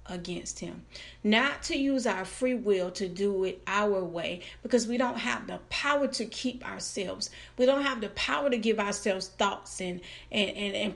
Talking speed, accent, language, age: 190 wpm, American, English, 40-59